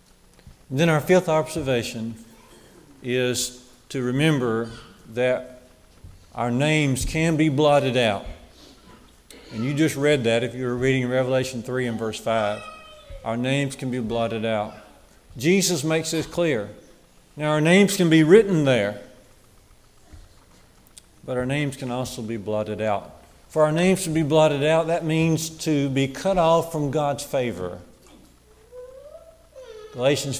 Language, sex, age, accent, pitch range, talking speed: English, male, 50-69, American, 125-165 Hz, 140 wpm